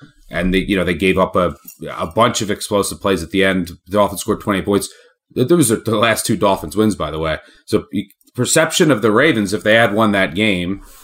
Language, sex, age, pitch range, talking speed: English, male, 30-49, 90-110 Hz, 230 wpm